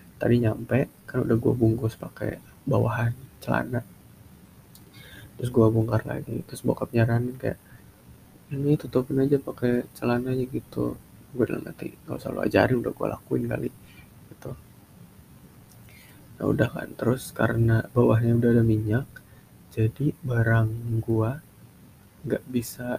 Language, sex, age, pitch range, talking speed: Indonesian, male, 20-39, 110-130 Hz, 130 wpm